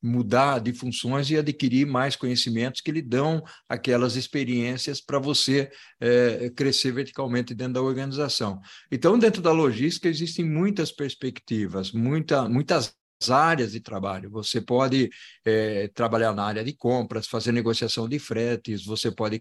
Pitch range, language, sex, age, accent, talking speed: 115-140 Hz, Portuguese, male, 50-69, Brazilian, 135 wpm